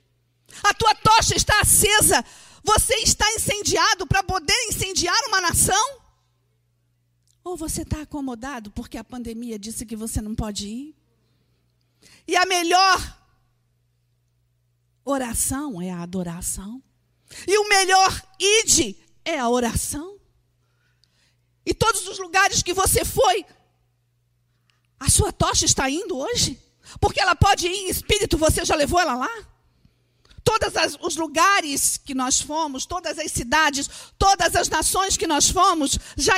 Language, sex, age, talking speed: Portuguese, female, 50-69, 130 wpm